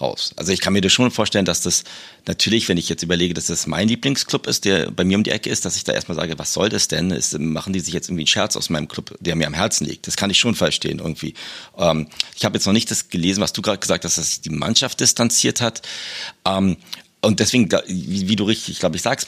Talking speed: 270 wpm